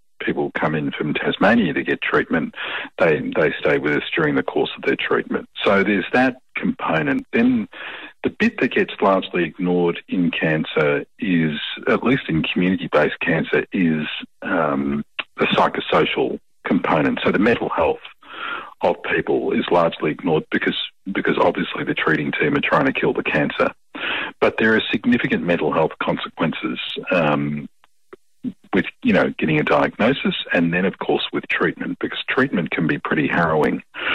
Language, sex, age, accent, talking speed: English, male, 40-59, Australian, 160 wpm